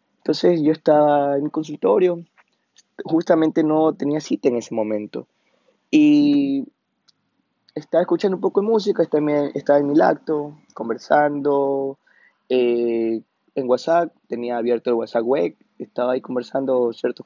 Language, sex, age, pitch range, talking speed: Spanish, male, 20-39, 120-155 Hz, 130 wpm